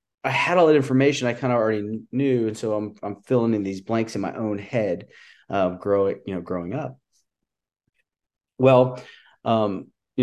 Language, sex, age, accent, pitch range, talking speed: English, male, 30-49, American, 95-115 Hz, 180 wpm